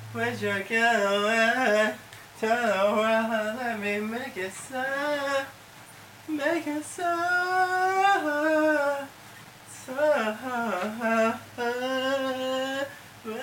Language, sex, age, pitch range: English, male, 20-39, 215-270 Hz